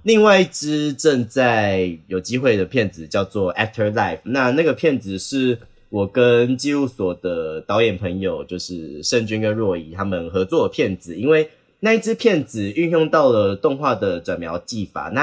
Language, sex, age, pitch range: Chinese, male, 20-39, 100-140 Hz